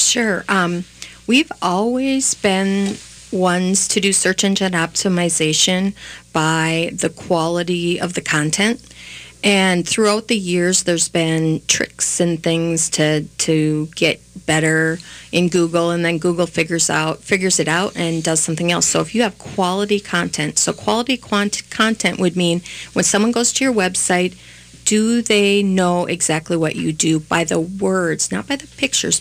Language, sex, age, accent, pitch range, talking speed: English, female, 40-59, American, 165-195 Hz, 155 wpm